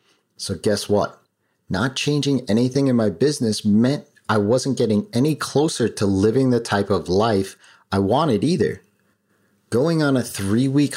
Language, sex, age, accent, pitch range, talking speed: English, male, 30-49, American, 100-130 Hz, 160 wpm